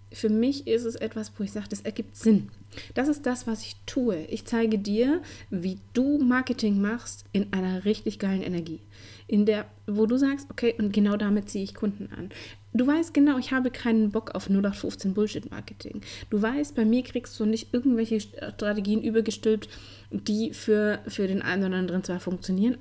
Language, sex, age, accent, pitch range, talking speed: German, female, 30-49, German, 180-225 Hz, 185 wpm